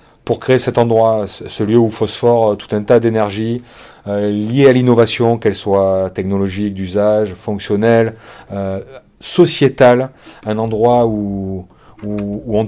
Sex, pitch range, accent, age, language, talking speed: male, 100-115 Hz, French, 30-49, French, 135 wpm